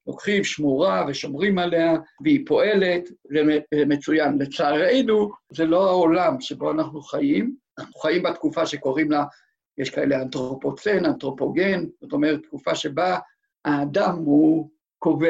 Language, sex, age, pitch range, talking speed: Hebrew, male, 60-79, 145-195 Hz, 120 wpm